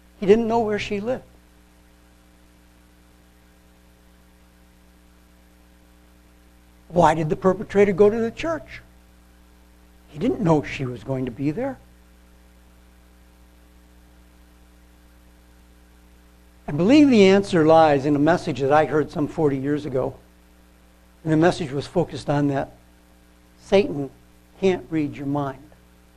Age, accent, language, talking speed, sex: 60-79, American, English, 115 wpm, male